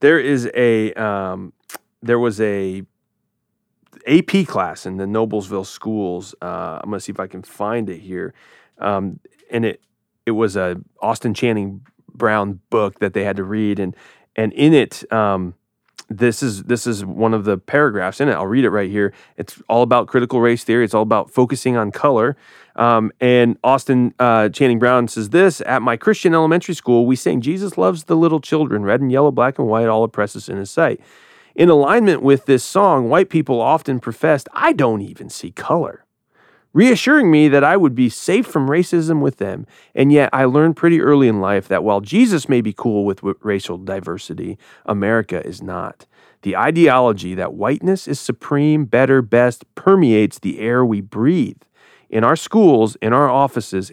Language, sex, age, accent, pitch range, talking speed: English, male, 30-49, American, 105-145 Hz, 185 wpm